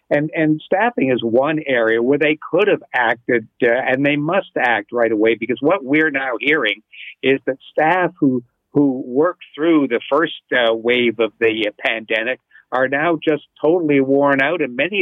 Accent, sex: American, male